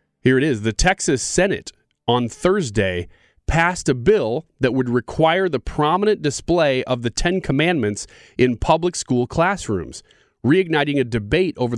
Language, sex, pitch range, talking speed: English, male, 115-160 Hz, 150 wpm